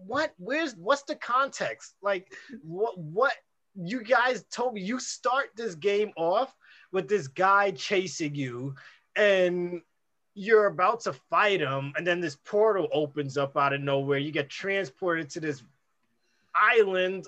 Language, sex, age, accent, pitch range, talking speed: English, male, 20-39, American, 155-215 Hz, 150 wpm